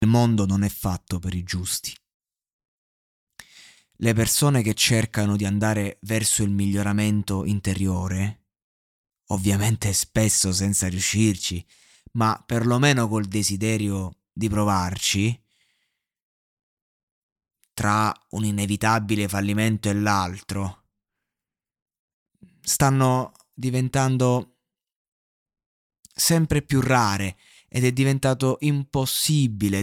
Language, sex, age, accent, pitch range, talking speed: Italian, male, 20-39, native, 100-120 Hz, 85 wpm